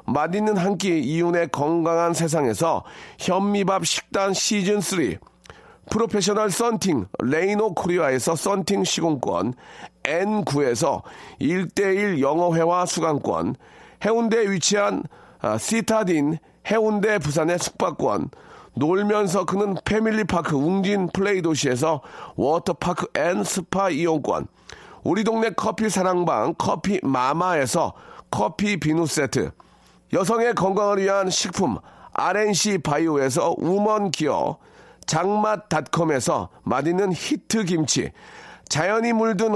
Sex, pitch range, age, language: male, 170-215 Hz, 40-59, Korean